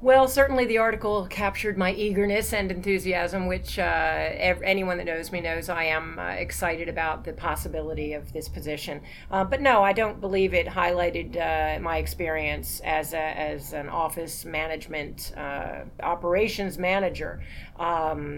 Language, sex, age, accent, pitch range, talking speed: English, female, 40-59, American, 160-190 Hz, 155 wpm